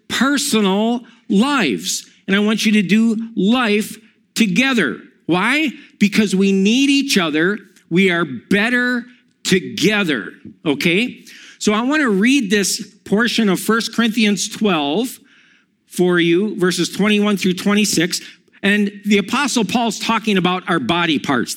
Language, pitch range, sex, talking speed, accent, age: English, 185-235 Hz, male, 130 wpm, American, 50-69